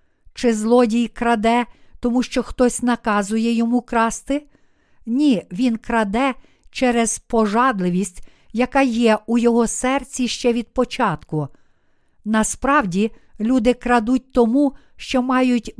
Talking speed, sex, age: 105 wpm, female, 50-69